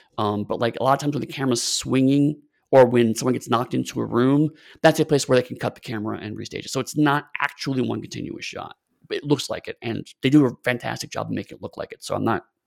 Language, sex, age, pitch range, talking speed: English, male, 30-49, 115-150 Hz, 270 wpm